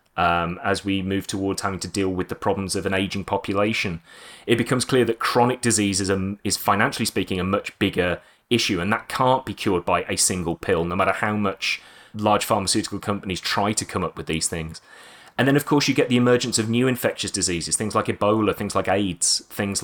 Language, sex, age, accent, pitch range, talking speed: English, male, 30-49, British, 95-115 Hz, 215 wpm